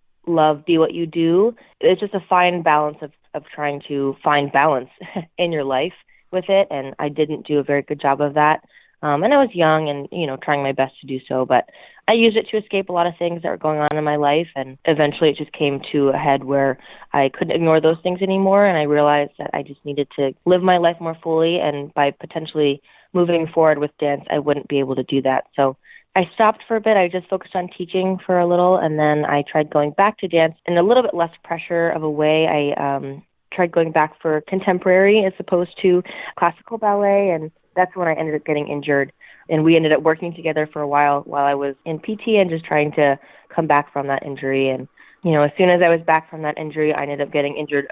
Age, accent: 20-39, American